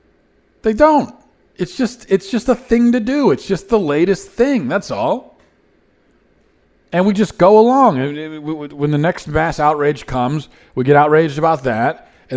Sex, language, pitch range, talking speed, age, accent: male, English, 125-195 Hz, 165 wpm, 40-59, American